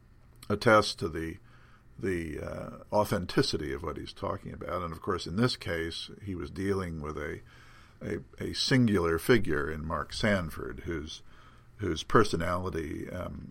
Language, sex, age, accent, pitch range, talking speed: English, male, 50-69, American, 85-110 Hz, 145 wpm